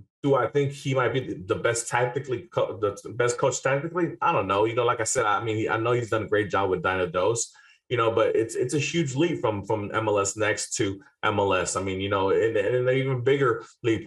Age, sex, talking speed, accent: 20-39, male, 245 wpm, American